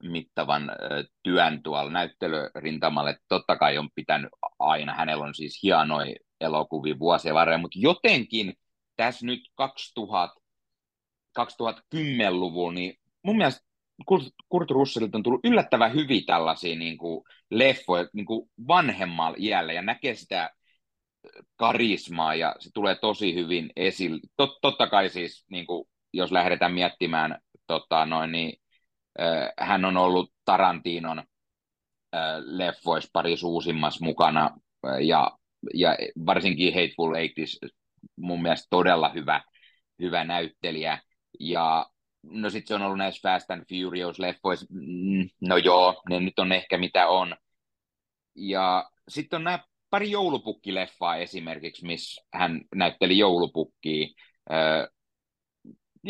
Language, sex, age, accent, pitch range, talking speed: Finnish, male, 30-49, native, 85-100 Hz, 115 wpm